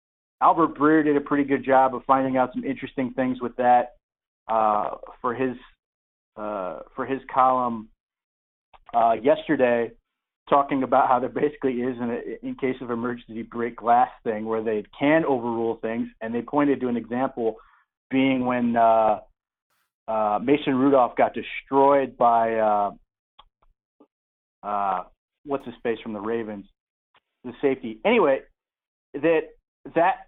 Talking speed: 140 wpm